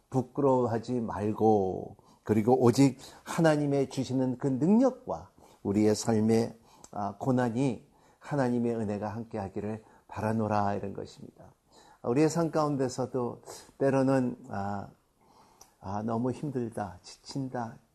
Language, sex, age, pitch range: Korean, male, 50-69, 115-140 Hz